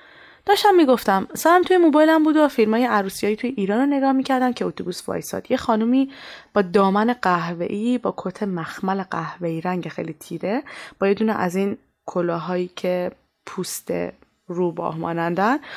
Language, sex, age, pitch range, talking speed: Persian, female, 20-39, 180-250 Hz, 145 wpm